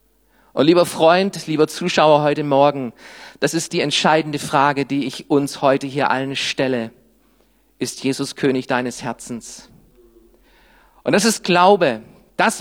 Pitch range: 135-180 Hz